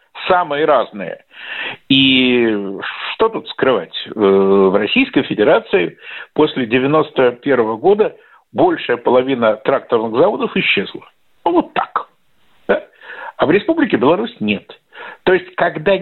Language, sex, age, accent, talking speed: Russian, male, 50-69, native, 105 wpm